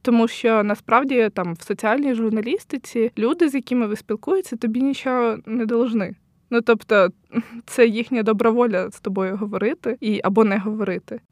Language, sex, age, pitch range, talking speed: Ukrainian, female, 20-39, 205-240 Hz, 155 wpm